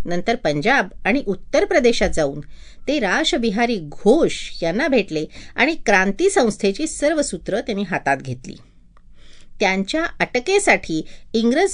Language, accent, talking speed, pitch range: Marathi, native, 110 wpm, 185-275 Hz